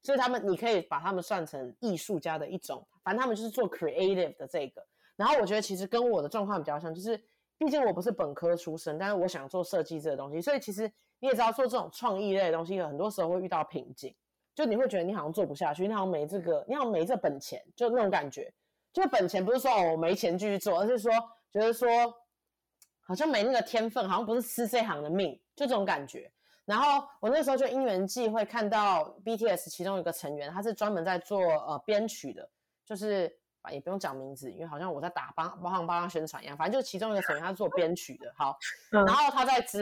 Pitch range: 170-230 Hz